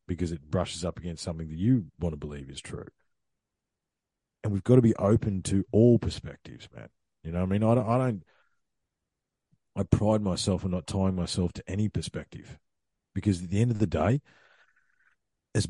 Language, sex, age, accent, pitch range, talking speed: English, male, 40-59, Australian, 90-110 Hz, 185 wpm